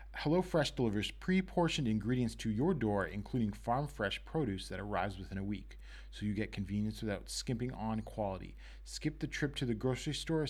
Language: English